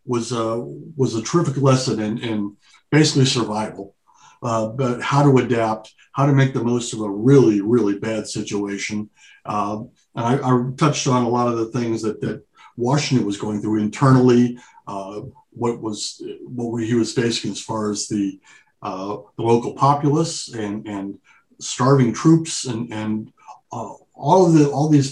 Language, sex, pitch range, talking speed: English, male, 110-135 Hz, 170 wpm